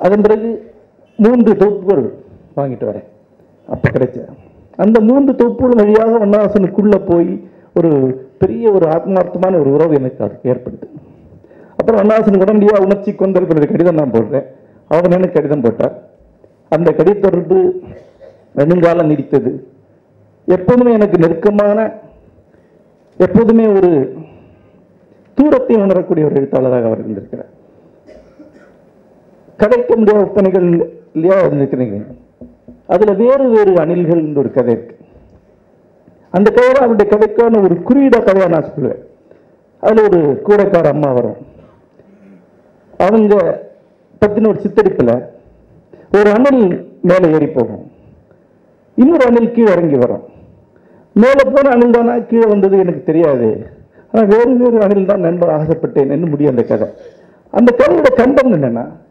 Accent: native